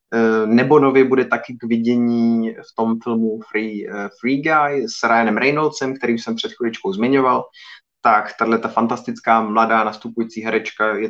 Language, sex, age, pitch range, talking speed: Czech, male, 20-39, 110-125 Hz, 150 wpm